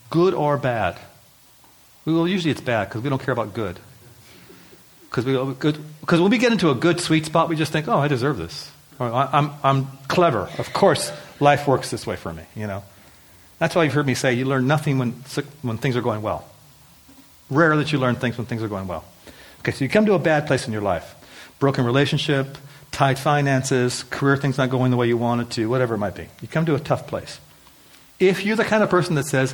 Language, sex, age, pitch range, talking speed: English, male, 40-59, 120-150 Hz, 225 wpm